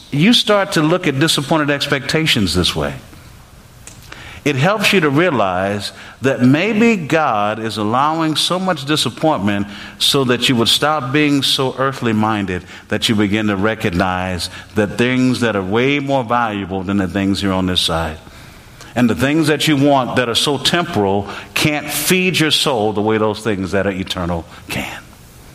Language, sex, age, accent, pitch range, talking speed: English, male, 50-69, American, 100-145 Hz, 170 wpm